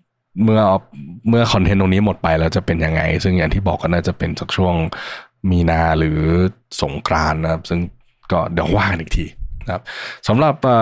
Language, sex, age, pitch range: Thai, male, 20-39, 85-105 Hz